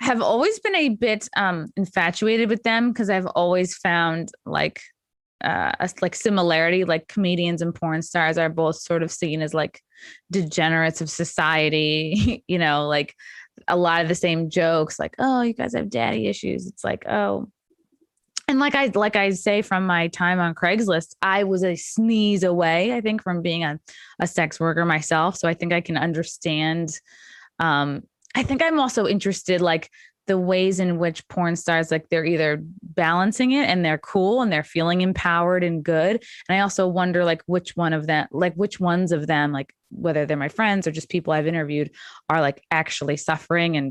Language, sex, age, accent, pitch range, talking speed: English, female, 20-39, American, 160-195 Hz, 190 wpm